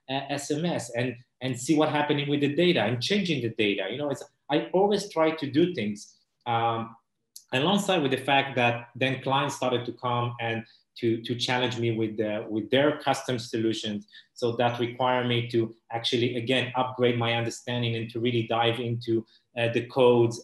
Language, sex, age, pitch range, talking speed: English, male, 30-49, 115-140 Hz, 180 wpm